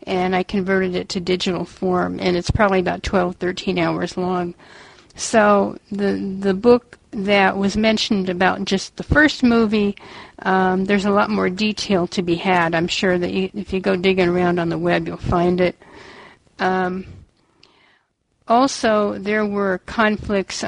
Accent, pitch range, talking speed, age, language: American, 175-200 Hz, 165 wpm, 50-69, English